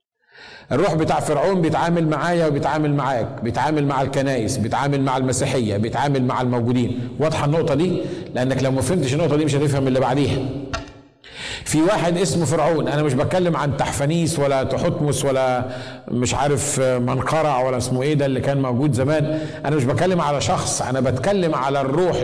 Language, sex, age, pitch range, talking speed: Arabic, male, 50-69, 130-170 Hz, 160 wpm